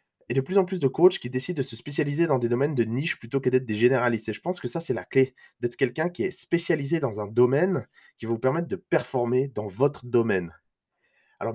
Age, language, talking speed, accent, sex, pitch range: 20-39, French, 250 wpm, French, male, 115-160 Hz